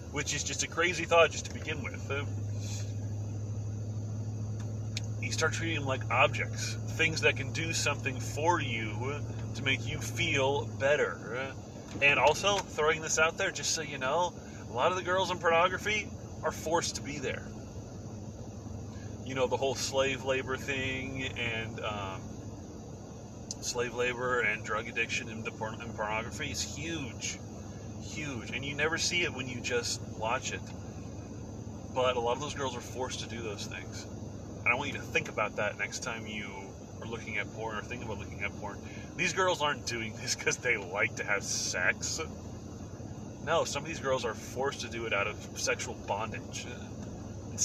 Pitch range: 105-125 Hz